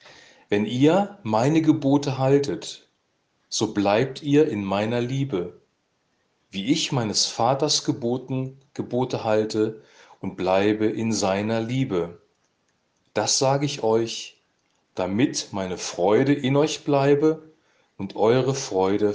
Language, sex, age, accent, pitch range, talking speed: German, male, 40-59, German, 105-140 Hz, 110 wpm